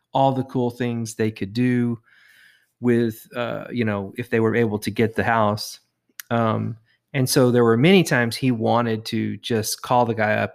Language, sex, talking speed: English, male, 195 wpm